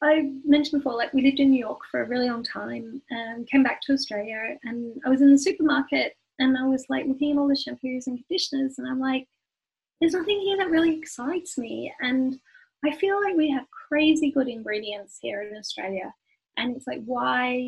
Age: 10-29